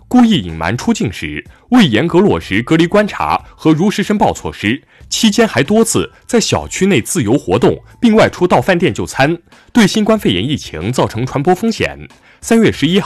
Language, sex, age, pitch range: Chinese, male, 20-39, 125-210 Hz